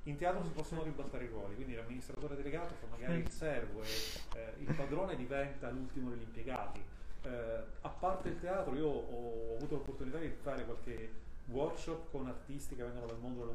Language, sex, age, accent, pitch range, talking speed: Italian, male, 30-49, native, 115-150 Hz, 185 wpm